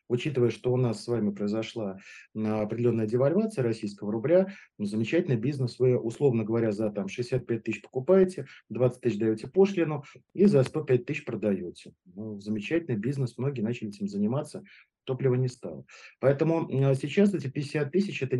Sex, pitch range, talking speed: male, 110-135 Hz, 150 wpm